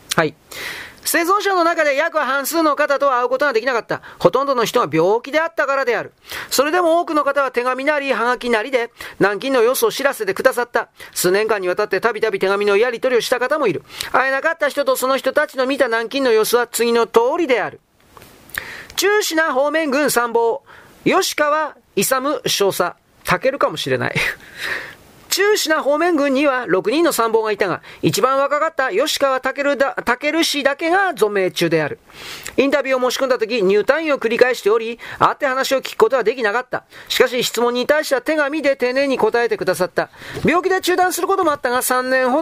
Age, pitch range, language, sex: 40-59, 240-315 Hz, Japanese, male